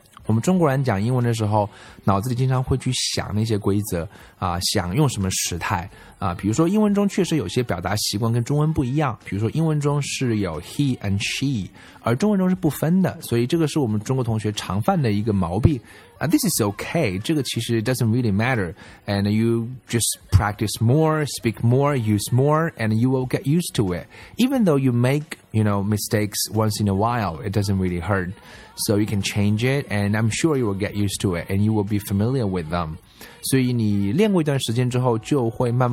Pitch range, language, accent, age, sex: 100-140 Hz, Chinese, native, 20-39, male